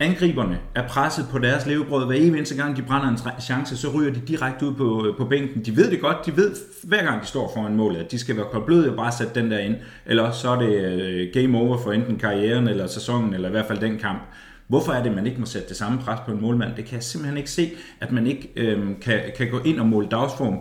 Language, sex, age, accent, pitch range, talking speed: Danish, male, 30-49, native, 110-135 Hz, 270 wpm